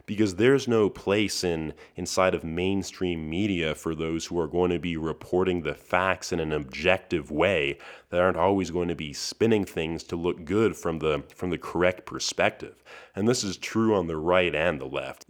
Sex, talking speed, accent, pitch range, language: male, 195 wpm, American, 85-100 Hz, English